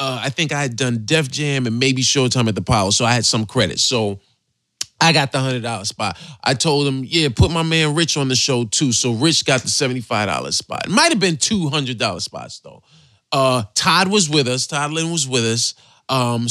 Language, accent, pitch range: English, American, 125-170 Hz